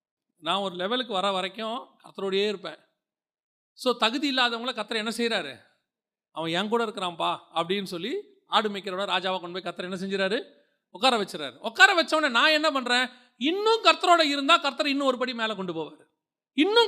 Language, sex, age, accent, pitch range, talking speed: Tamil, male, 40-59, native, 170-250 Hz, 155 wpm